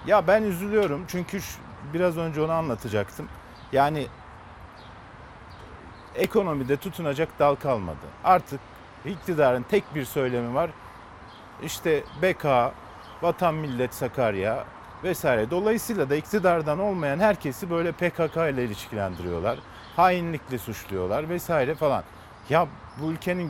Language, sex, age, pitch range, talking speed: Turkish, male, 50-69, 115-170 Hz, 105 wpm